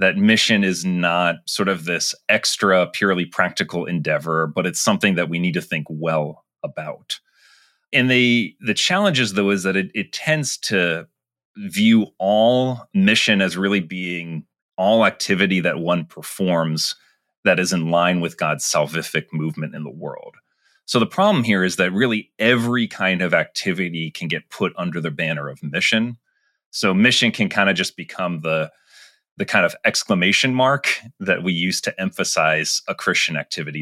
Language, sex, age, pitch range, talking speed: English, male, 30-49, 85-120 Hz, 170 wpm